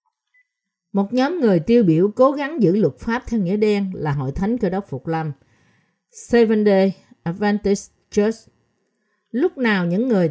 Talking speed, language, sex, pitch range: 165 wpm, Vietnamese, female, 160-230 Hz